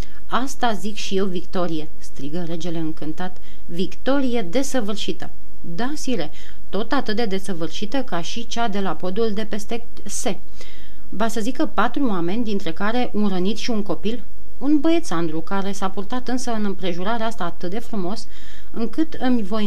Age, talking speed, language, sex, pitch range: 30-49, 160 wpm, Romanian, female, 175-235 Hz